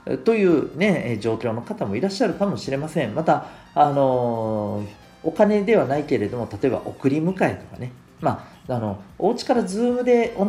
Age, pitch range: 40-59, 100-155 Hz